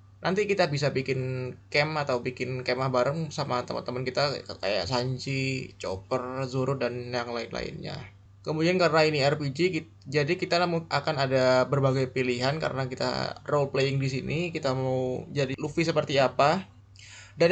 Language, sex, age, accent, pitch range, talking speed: Indonesian, male, 20-39, native, 125-155 Hz, 145 wpm